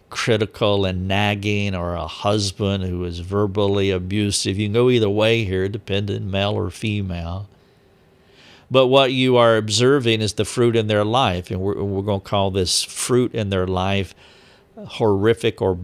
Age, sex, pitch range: 50-69, male, 95-115 Hz